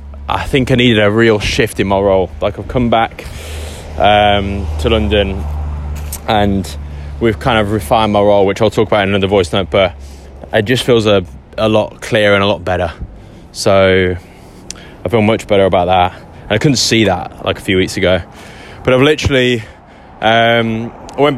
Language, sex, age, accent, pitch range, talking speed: English, male, 10-29, British, 90-115 Hz, 185 wpm